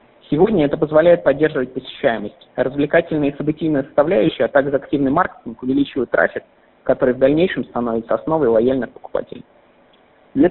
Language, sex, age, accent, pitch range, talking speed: Russian, male, 20-39, native, 120-150 Hz, 130 wpm